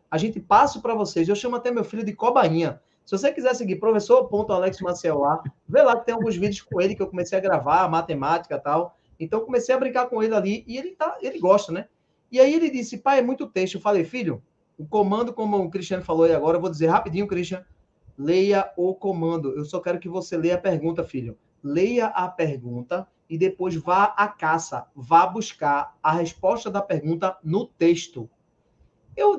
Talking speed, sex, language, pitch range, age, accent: 200 wpm, male, Portuguese, 165-220 Hz, 20-39, Brazilian